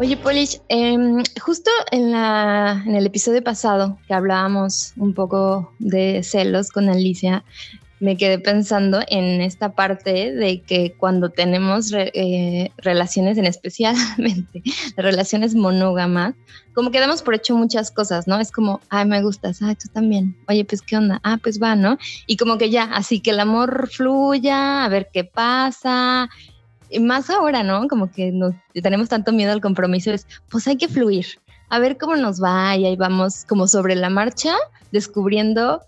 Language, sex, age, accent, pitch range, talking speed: Spanish, female, 20-39, Mexican, 190-235 Hz, 170 wpm